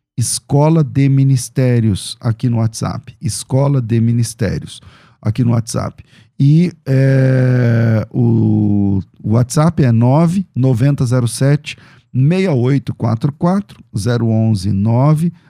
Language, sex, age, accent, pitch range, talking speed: Portuguese, male, 50-69, Brazilian, 115-140 Hz, 80 wpm